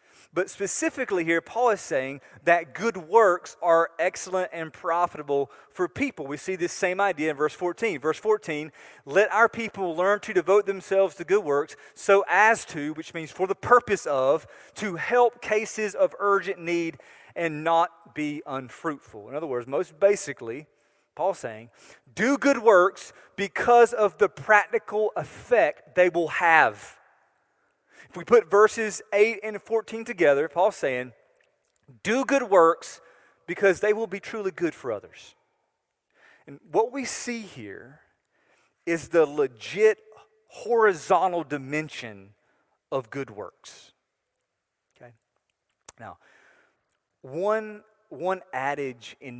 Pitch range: 145-215 Hz